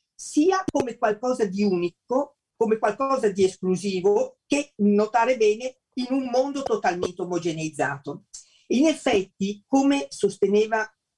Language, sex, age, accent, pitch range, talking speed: Italian, female, 50-69, native, 160-240 Hz, 115 wpm